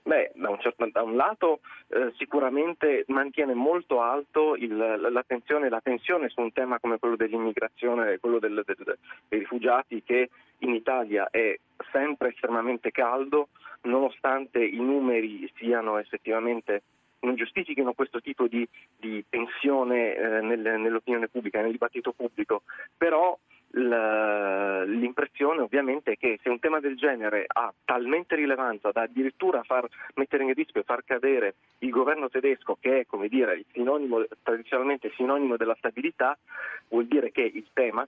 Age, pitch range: 30-49, 115-145 Hz